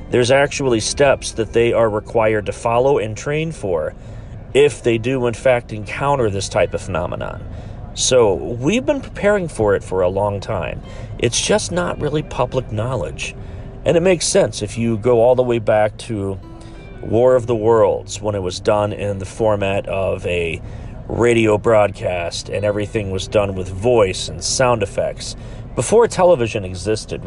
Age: 40-59